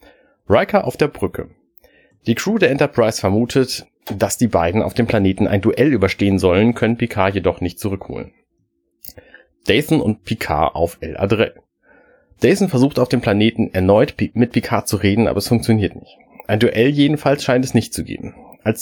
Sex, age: male, 30-49